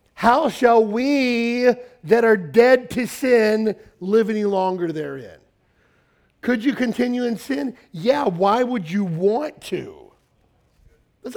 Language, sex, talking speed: English, male, 125 wpm